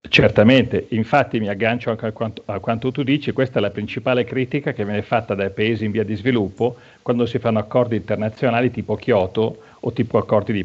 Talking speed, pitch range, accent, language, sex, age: 195 wpm, 105-125 Hz, native, Italian, male, 40-59